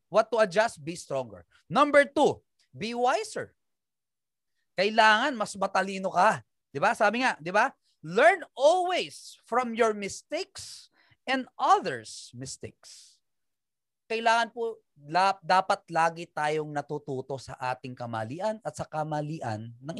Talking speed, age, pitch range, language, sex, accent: 125 wpm, 30-49, 185-255 Hz, Filipino, male, native